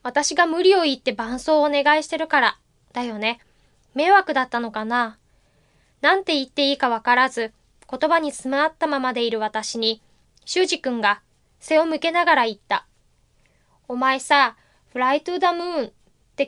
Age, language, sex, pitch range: 20-39, Chinese, female, 240-335 Hz